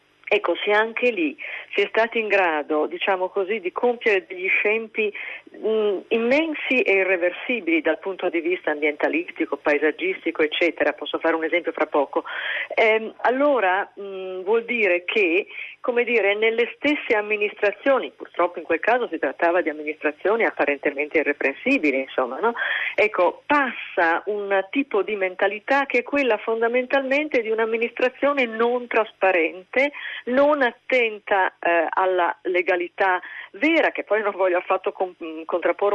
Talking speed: 140 wpm